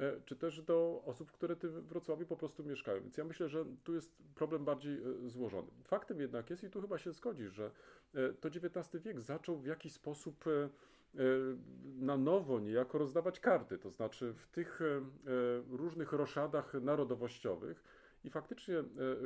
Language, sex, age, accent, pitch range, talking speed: Polish, male, 40-59, native, 125-165 Hz, 155 wpm